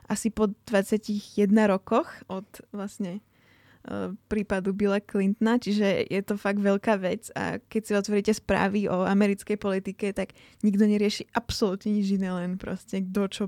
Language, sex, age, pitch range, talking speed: Slovak, female, 10-29, 200-230 Hz, 150 wpm